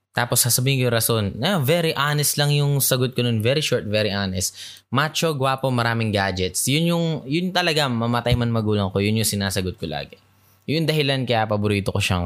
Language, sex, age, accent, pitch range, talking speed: Filipino, male, 20-39, native, 95-120 Hz, 195 wpm